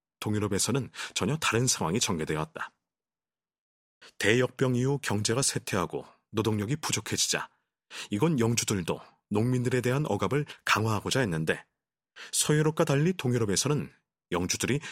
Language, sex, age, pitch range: Korean, male, 30-49, 100-140 Hz